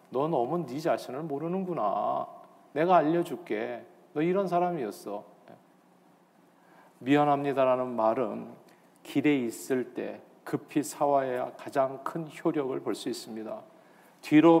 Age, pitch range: 40-59, 125-155 Hz